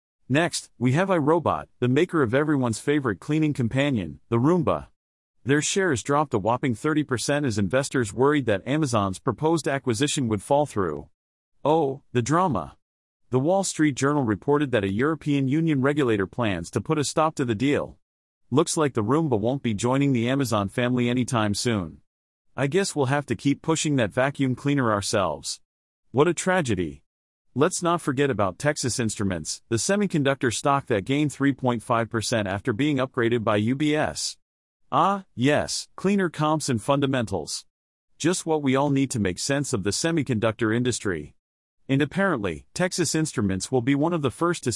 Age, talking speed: 40-59, 165 wpm